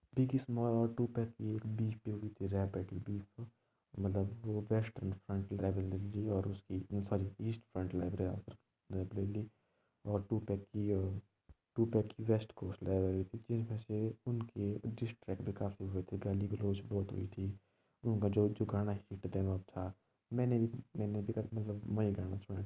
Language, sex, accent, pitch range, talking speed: Hindi, male, native, 95-115 Hz, 175 wpm